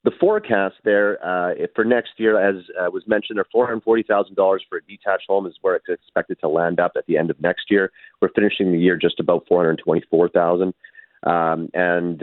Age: 40-59